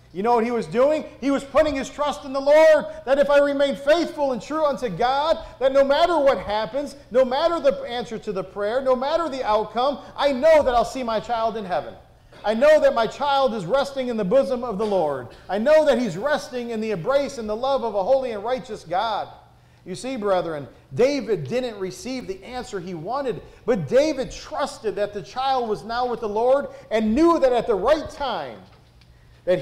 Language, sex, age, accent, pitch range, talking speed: English, male, 40-59, American, 195-270 Hz, 215 wpm